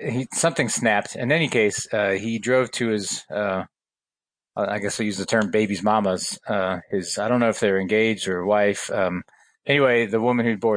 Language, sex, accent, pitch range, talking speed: English, male, American, 100-120 Hz, 205 wpm